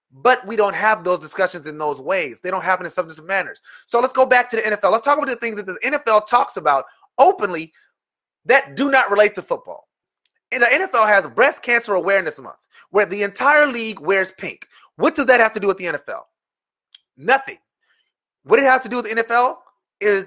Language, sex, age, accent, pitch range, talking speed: English, male, 30-49, American, 195-265 Hz, 215 wpm